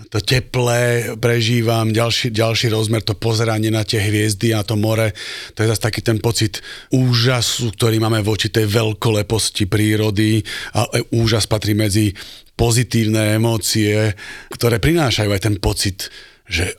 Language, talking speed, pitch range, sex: Slovak, 140 wpm, 100-115 Hz, male